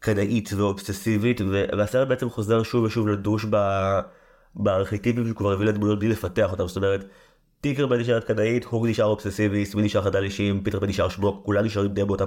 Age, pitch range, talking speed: 20-39, 95-115 Hz, 175 wpm